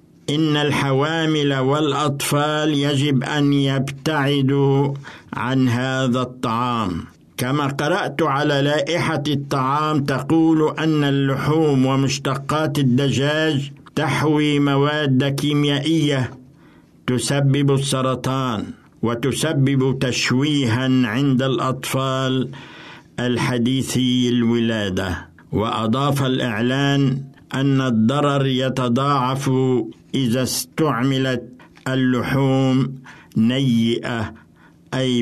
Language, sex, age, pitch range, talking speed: Arabic, male, 60-79, 125-145 Hz, 70 wpm